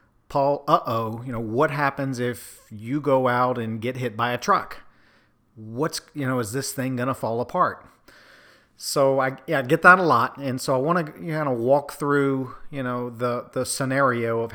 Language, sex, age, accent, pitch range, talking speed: English, male, 40-59, American, 115-140 Hz, 210 wpm